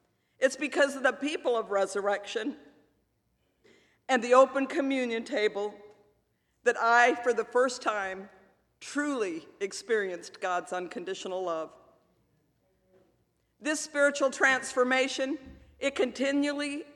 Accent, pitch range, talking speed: American, 225-275 Hz, 100 wpm